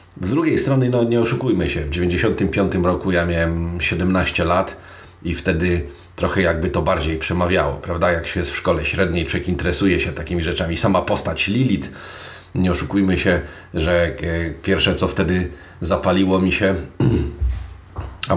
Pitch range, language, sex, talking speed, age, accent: 85-100 Hz, Polish, male, 155 wpm, 40-59, native